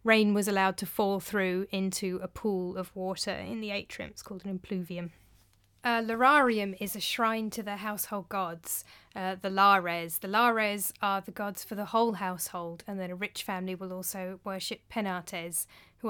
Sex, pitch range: female, 180-210 Hz